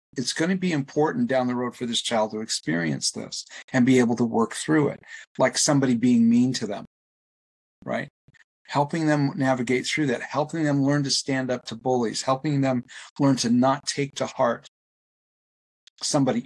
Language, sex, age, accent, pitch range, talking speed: English, male, 40-59, American, 120-145 Hz, 180 wpm